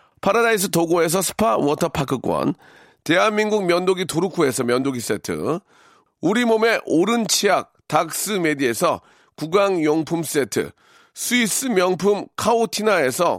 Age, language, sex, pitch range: 40-59, Korean, male, 170-215 Hz